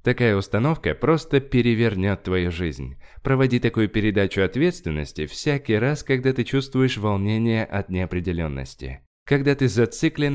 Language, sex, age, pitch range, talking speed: Russian, male, 20-39, 85-130 Hz, 120 wpm